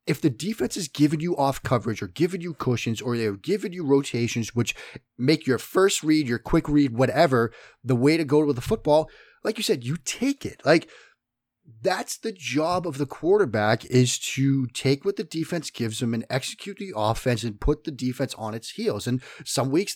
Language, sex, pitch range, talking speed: English, male, 120-150 Hz, 205 wpm